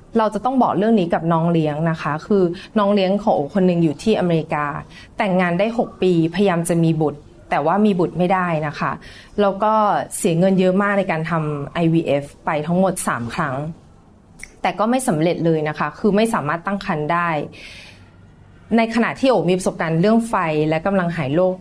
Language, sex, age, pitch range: Thai, female, 20-39, 165-210 Hz